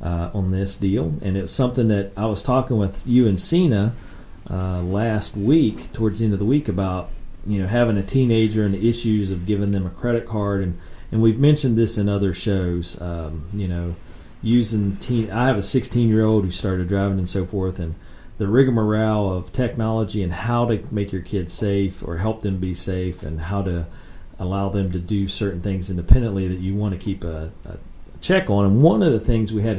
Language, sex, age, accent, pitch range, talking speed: English, male, 40-59, American, 90-110 Hz, 215 wpm